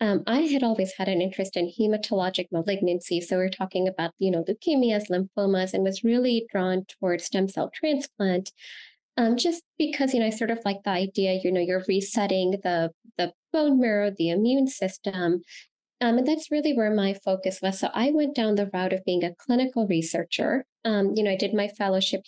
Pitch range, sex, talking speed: 185-220 Hz, female, 200 wpm